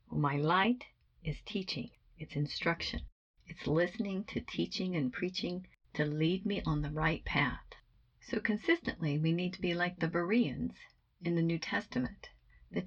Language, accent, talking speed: English, American, 155 wpm